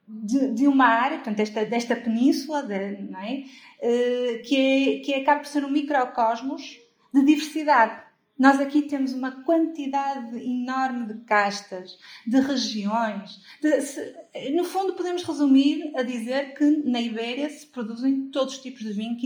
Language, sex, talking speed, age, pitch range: Portuguese, female, 155 wpm, 30-49, 220-275 Hz